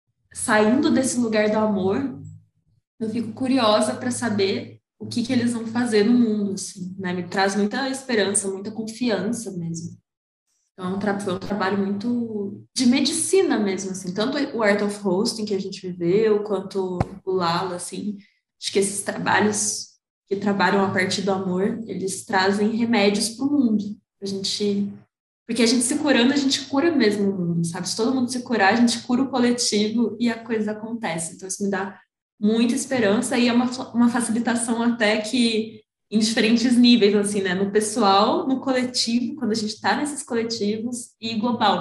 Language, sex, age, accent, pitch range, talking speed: Portuguese, female, 10-29, Brazilian, 195-235 Hz, 175 wpm